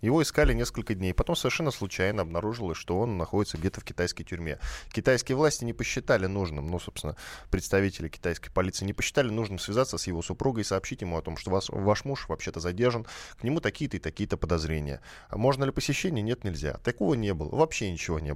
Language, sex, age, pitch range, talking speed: Russian, male, 10-29, 90-125 Hz, 200 wpm